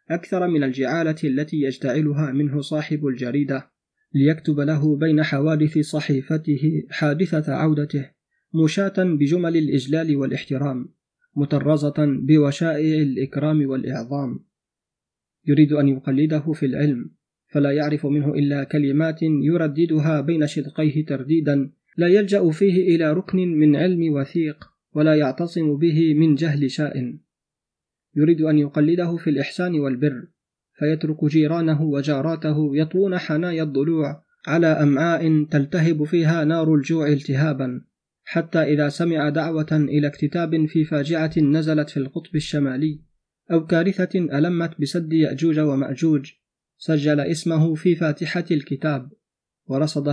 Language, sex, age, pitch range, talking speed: Arabic, male, 30-49, 145-165 Hz, 115 wpm